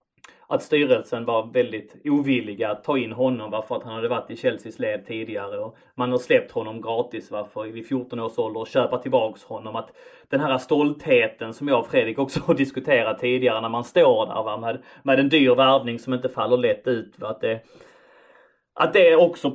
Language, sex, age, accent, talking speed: English, male, 30-49, Swedish, 210 wpm